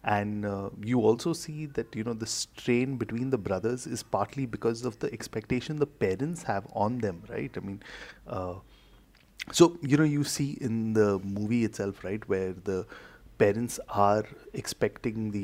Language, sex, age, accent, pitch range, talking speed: English, male, 30-49, Indian, 100-120 Hz, 170 wpm